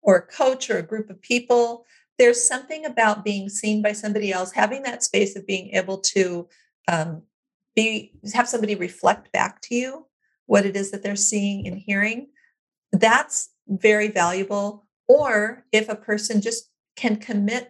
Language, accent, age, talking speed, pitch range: English, American, 50-69, 165 wpm, 190-230 Hz